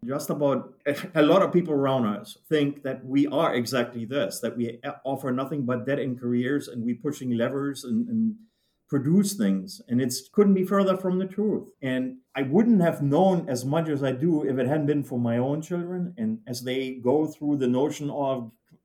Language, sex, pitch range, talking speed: English, male, 130-175 Hz, 205 wpm